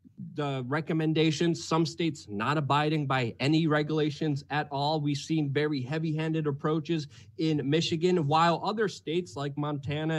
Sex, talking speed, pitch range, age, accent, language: male, 135 wpm, 140-180 Hz, 30-49, American, English